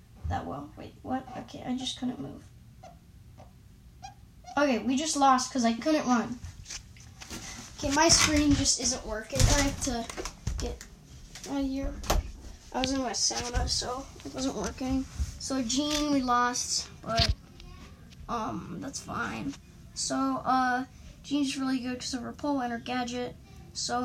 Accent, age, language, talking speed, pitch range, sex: American, 10-29, English, 150 wpm, 175-270 Hz, female